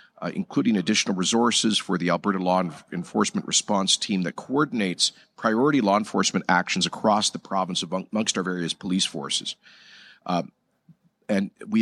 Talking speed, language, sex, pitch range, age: 145 wpm, English, male, 95-125 Hz, 50-69